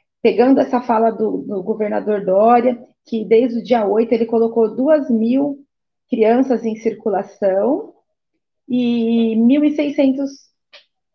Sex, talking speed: female, 115 wpm